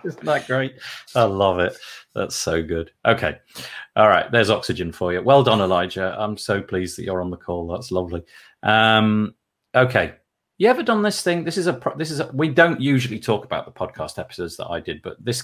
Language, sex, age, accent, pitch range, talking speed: English, male, 40-59, British, 100-135 Hz, 210 wpm